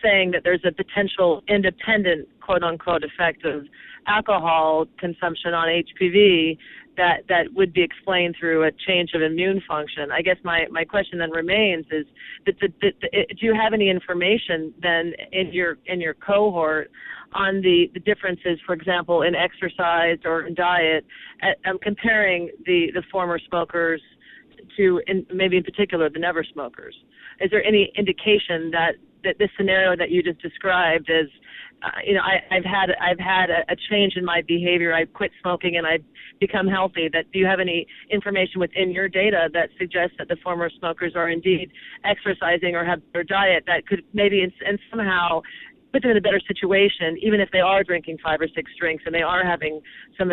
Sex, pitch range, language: female, 165-195 Hz, English